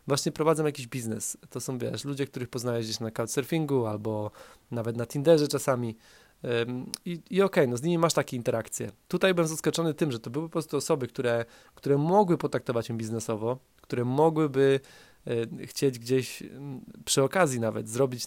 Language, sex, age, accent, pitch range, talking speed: Polish, male, 20-39, native, 120-150 Hz, 170 wpm